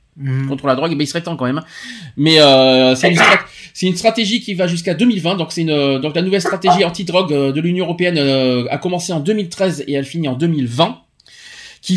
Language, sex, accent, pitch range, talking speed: French, male, French, 145-195 Hz, 205 wpm